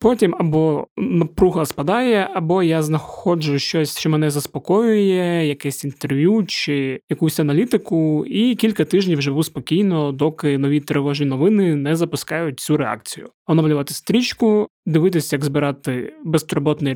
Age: 20-39